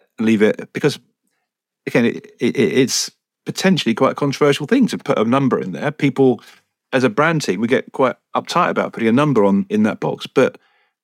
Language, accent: English, British